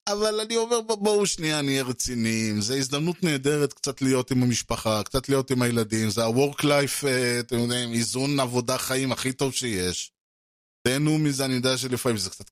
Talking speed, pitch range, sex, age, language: 175 wpm, 120-150 Hz, male, 20-39, Hebrew